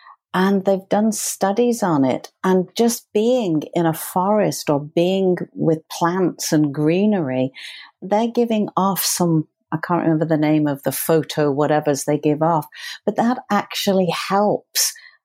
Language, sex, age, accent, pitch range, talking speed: English, female, 50-69, British, 165-210 Hz, 150 wpm